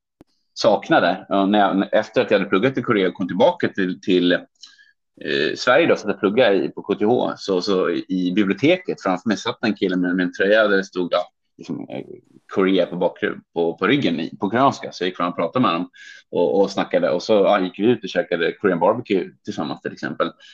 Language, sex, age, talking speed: Swedish, male, 30-49, 215 wpm